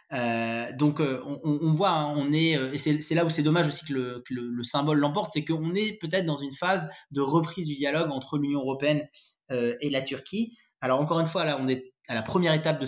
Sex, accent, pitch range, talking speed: male, French, 125-165 Hz, 255 wpm